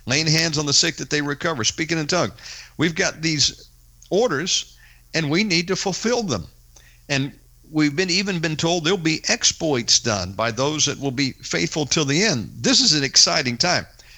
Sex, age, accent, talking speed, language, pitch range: male, 50-69, American, 190 wpm, English, 110-175 Hz